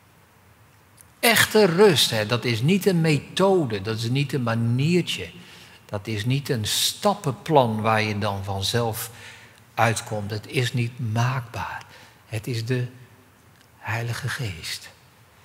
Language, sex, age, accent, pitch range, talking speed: Dutch, male, 50-69, Dutch, 105-130 Hz, 120 wpm